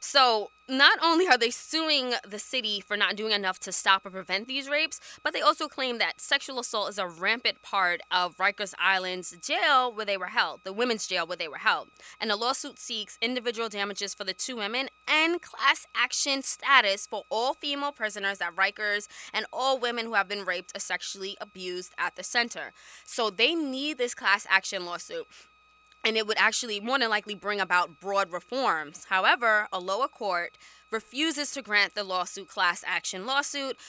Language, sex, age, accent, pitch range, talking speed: English, female, 20-39, American, 195-275 Hz, 190 wpm